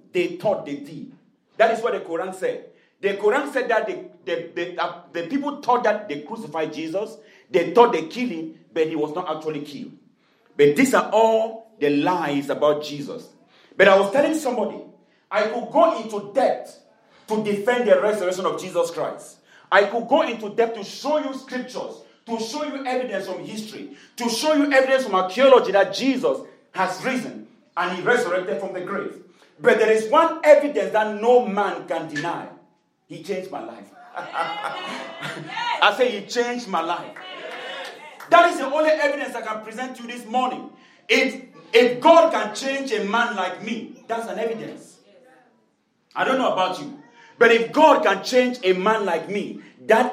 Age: 40-59